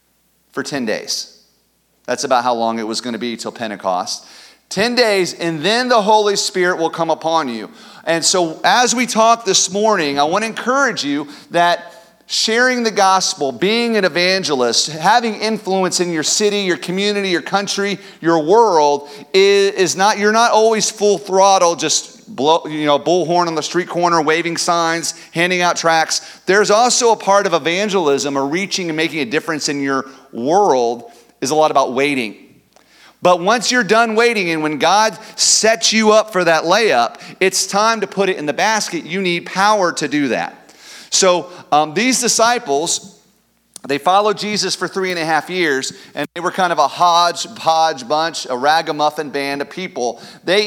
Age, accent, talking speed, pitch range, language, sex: 40-59, American, 180 wpm, 155-205 Hz, English, male